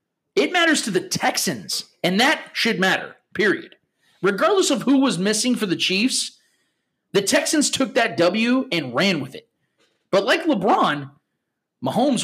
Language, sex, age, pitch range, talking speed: English, male, 30-49, 155-230 Hz, 150 wpm